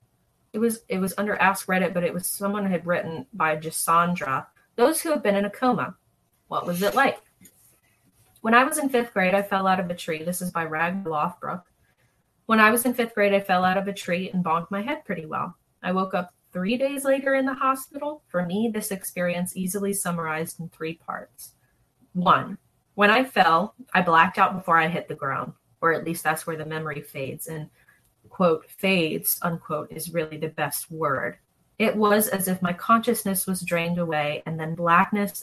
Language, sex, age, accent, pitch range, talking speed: English, female, 30-49, American, 165-200 Hz, 205 wpm